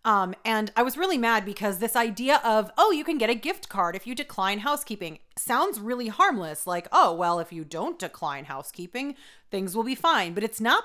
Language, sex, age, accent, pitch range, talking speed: English, female, 30-49, American, 185-250 Hz, 215 wpm